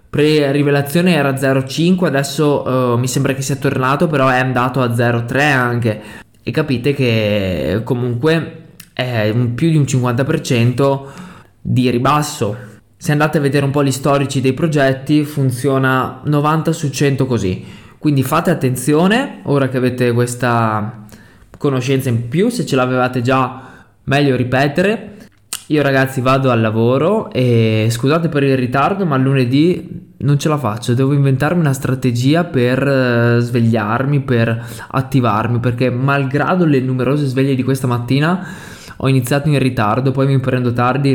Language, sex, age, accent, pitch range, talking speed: Italian, male, 20-39, native, 125-145 Hz, 145 wpm